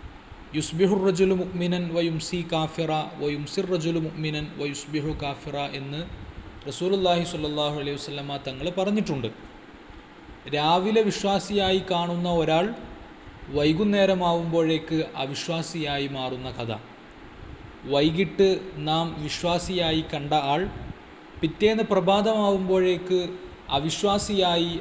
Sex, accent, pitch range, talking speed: male, native, 145-180 Hz, 80 wpm